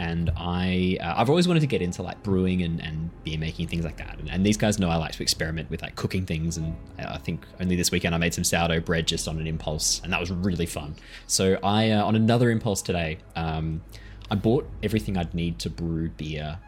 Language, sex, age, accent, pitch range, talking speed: English, male, 20-39, Australian, 85-120 Hz, 240 wpm